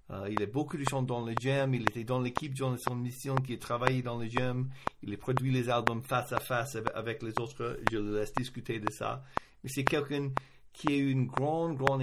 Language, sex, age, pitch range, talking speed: French, male, 50-69, 120-135 Hz, 240 wpm